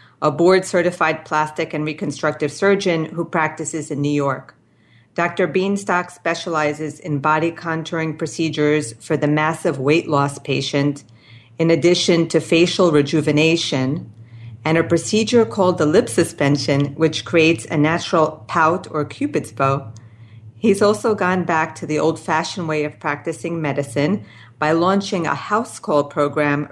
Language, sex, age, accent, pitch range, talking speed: English, female, 40-59, American, 145-170 Hz, 140 wpm